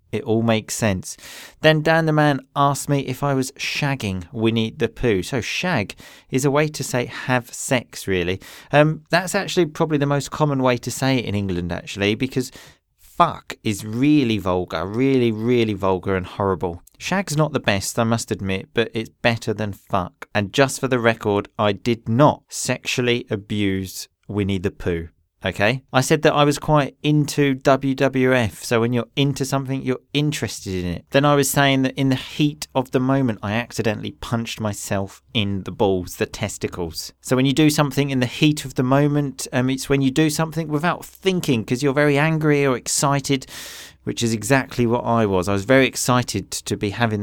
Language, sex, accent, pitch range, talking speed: English, male, British, 105-145 Hz, 195 wpm